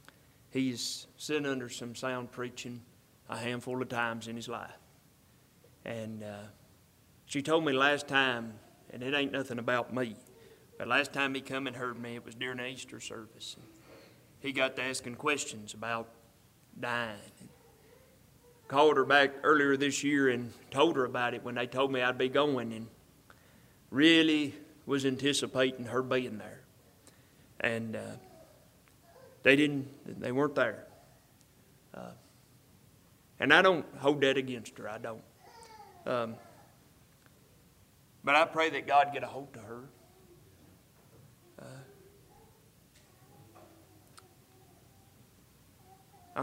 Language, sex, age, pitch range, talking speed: English, male, 30-49, 120-140 Hz, 130 wpm